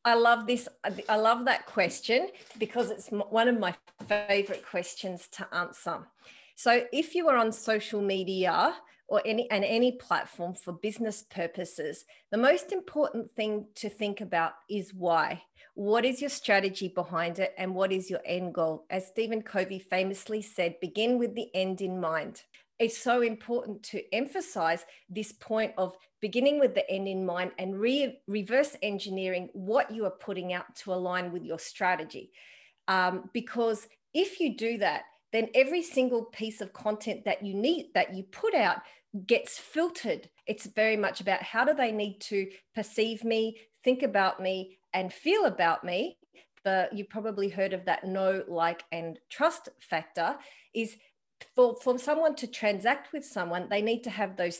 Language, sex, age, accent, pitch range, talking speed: English, female, 40-59, Australian, 185-235 Hz, 165 wpm